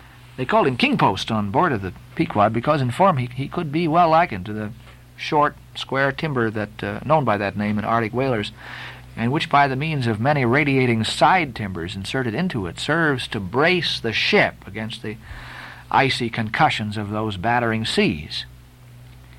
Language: English